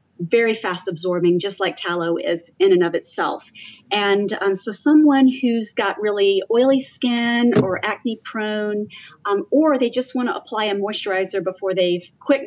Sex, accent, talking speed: female, American, 155 wpm